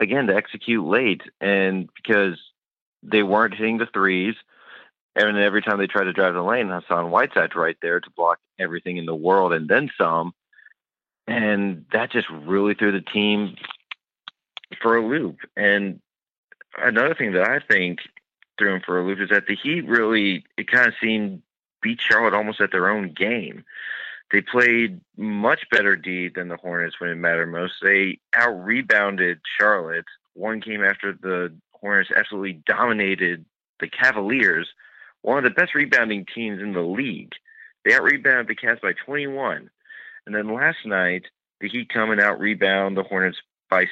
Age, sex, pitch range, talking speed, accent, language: 30-49, male, 95-110 Hz, 165 wpm, American, English